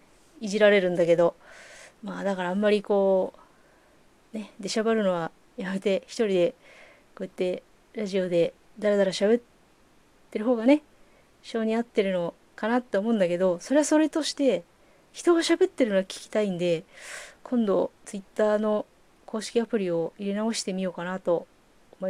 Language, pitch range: Japanese, 190-255 Hz